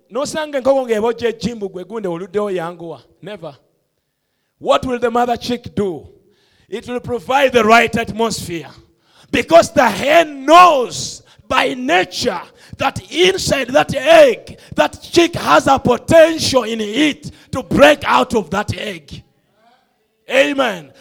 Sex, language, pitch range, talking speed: male, English, 210-300 Hz, 105 wpm